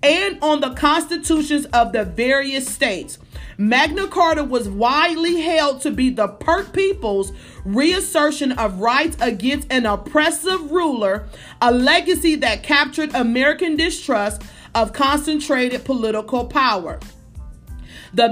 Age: 40-59